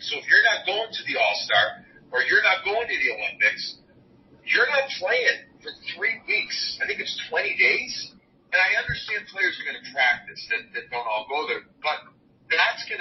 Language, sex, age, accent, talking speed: English, male, 50-69, American, 200 wpm